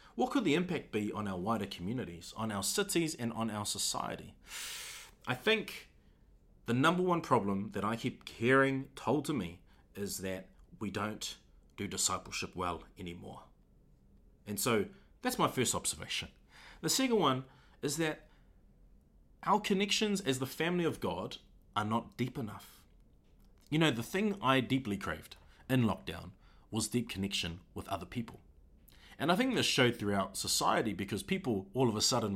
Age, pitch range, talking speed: 30-49, 95-135 Hz, 160 wpm